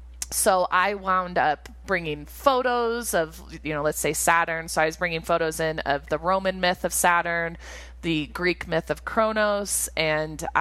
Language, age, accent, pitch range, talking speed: English, 20-39, American, 150-180 Hz, 170 wpm